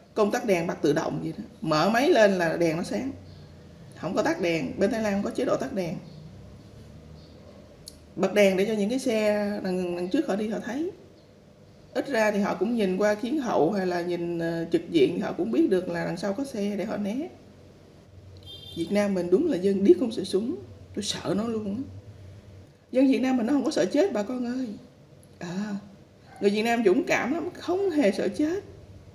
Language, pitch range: Vietnamese, 165-245 Hz